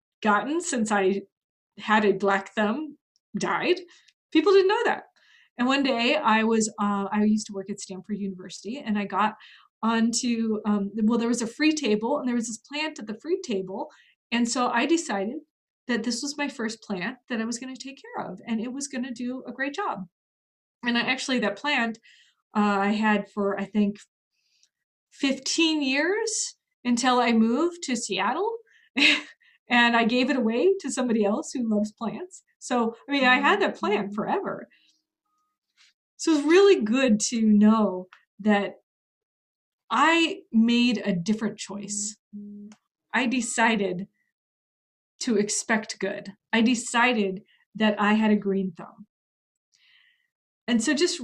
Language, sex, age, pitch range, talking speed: English, female, 20-39, 205-280 Hz, 160 wpm